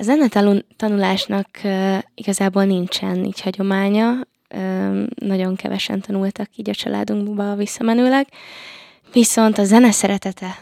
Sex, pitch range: female, 195-230 Hz